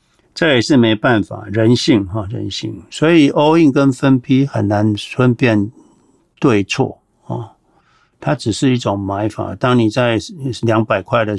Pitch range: 105-125 Hz